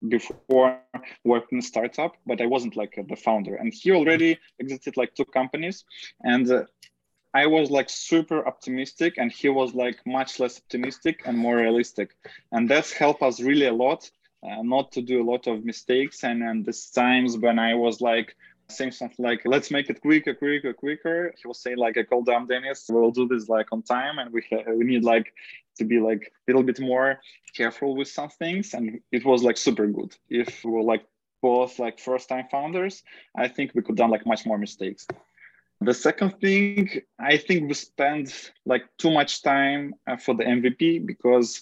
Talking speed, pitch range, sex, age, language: 195 wpm, 120-145 Hz, male, 20-39, English